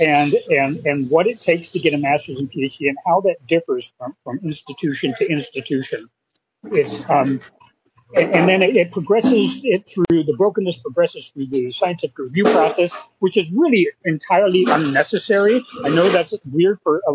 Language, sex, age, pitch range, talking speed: English, male, 40-59, 155-215 Hz, 175 wpm